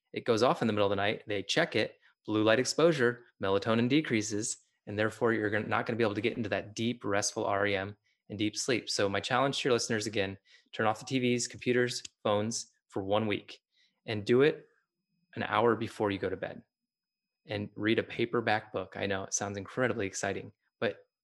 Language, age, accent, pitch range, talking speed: English, 20-39, American, 100-115 Hz, 205 wpm